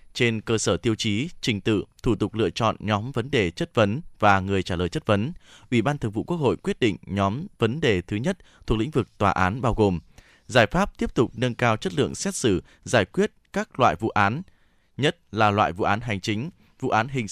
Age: 20-39